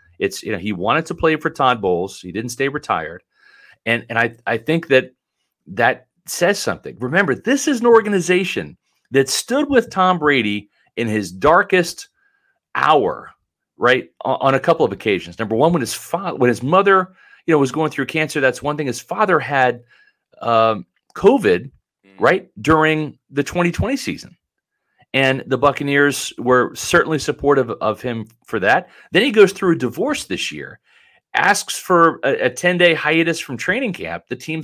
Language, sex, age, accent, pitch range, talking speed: English, male, 40-59, American, 125-175 Hz, 170 wpm